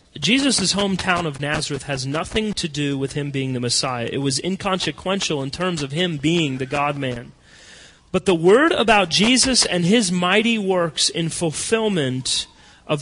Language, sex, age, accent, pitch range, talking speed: English, male, 30-49, American, 145-205 Hz, 160 wpm